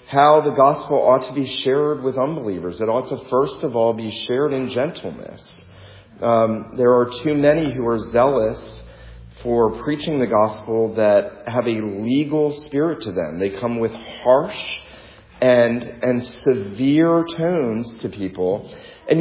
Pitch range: 110-140 Hz